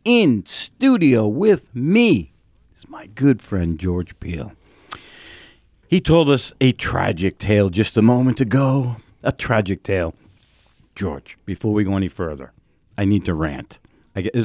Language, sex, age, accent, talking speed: English, male, 50-69, American, 140 wpm